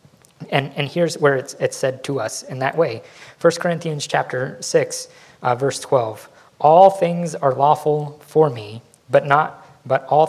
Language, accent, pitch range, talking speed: English, American, 130-160 Hz, 170 wpm